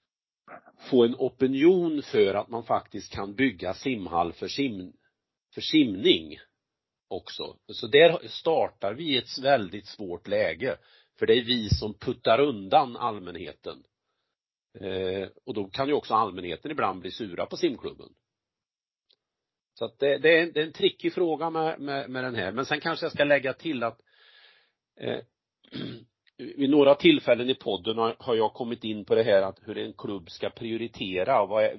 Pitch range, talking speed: 100-160 Hz, 160 wpm